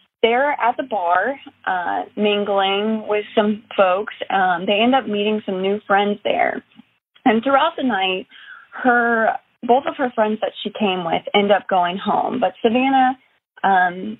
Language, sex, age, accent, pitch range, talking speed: English, female, 20-39, American, 190-245 Hz, 160 wpm